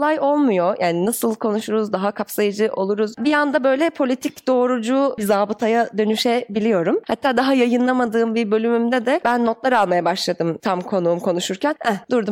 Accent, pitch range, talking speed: native, 205-285 Hz, 150 wpm